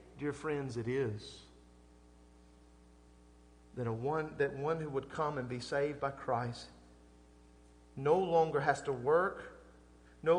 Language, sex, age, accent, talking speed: English, male, 40-59, American, 120 wpm